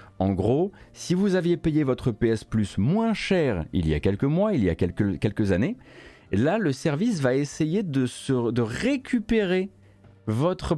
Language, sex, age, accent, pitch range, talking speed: French, male, 40-59, French, 100-160 Hz, 180 wpm